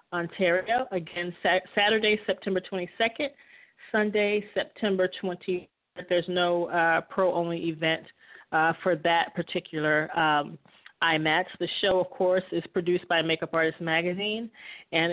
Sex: female